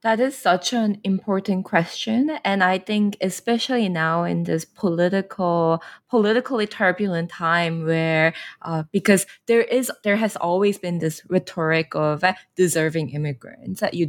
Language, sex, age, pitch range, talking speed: English, female, 20-39, 160-200 Hz, 145 wpm